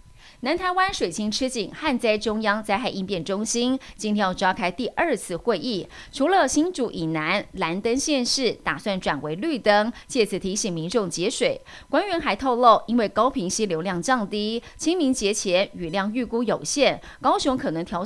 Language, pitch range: Chinese, 195-270 Hz